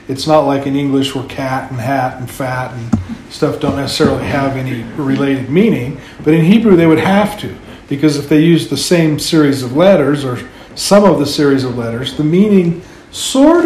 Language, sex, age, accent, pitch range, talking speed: English, male, 50-69, American, 135-155 Hz, 200 wpm